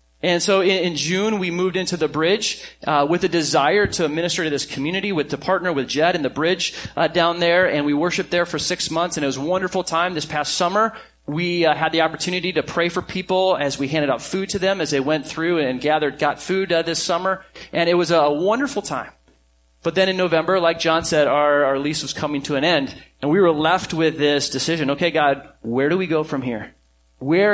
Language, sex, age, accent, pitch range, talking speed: English, male, 30-49, American, 140-185 Hz, 235 wpm